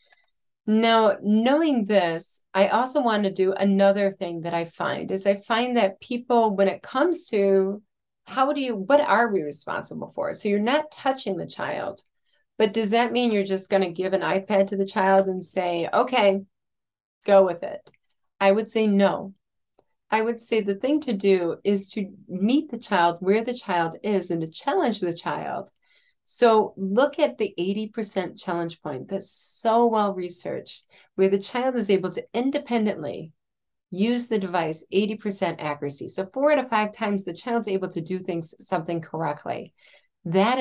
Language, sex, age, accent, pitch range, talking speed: English, female, 30-49, American, 180-225 Hz, 175 wpm